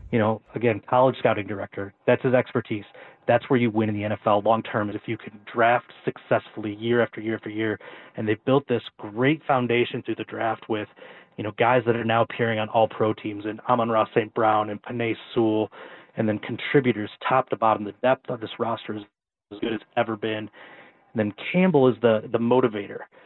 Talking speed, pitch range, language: 210 wpm, 110-130 Hz, English